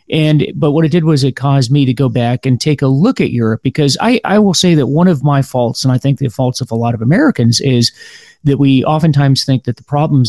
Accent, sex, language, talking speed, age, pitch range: American, male, English, 270 wpm, 40-59, 120-145 Hz